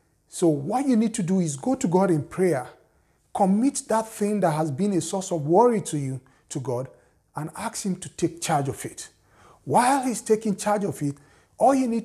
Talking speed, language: 215 wpm, English